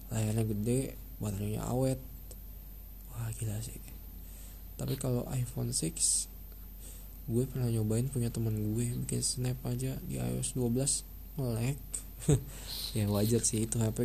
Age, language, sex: 20-39, Indonesian, male